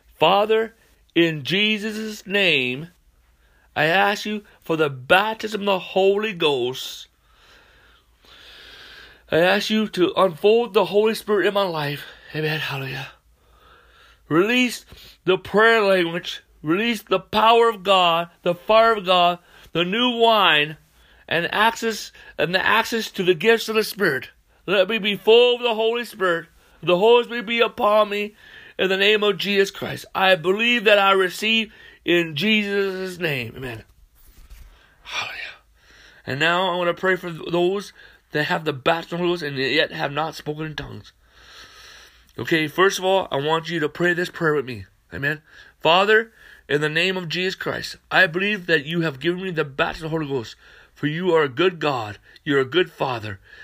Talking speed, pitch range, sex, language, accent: 170 wpm, 155-210 Hz, male, English, American